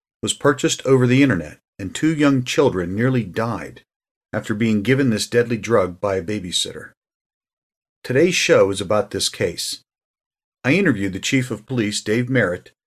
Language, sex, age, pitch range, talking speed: English, male, 40-59, 95-125 Hz, 160 wpm